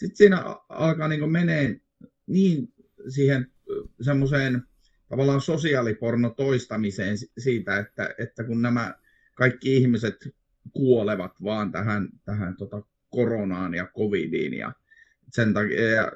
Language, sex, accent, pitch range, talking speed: Finnish, male, native, 105-135 Hz, 100 wpm